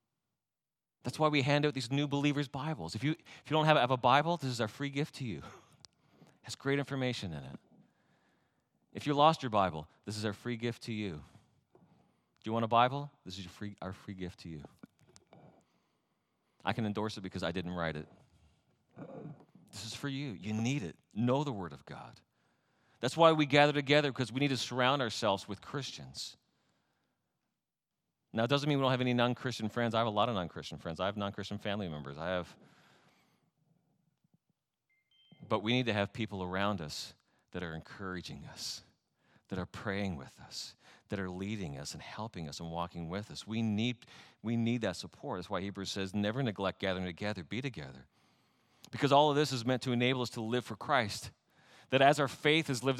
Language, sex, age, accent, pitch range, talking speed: English, male, 40-59, American, 100-140 Hz, 200 wpm